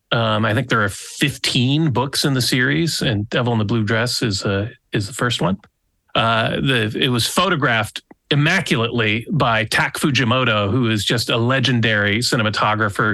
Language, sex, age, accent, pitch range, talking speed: English, male, 40-59, American, 105-130 Hz, 170 wpm